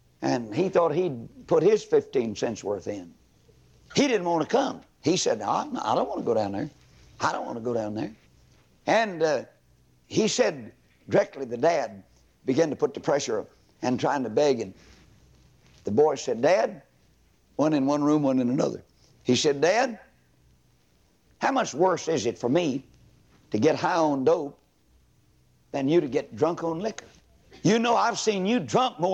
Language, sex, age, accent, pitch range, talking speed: English, male, 60-79, American, 145-215 Hz, 185 wpm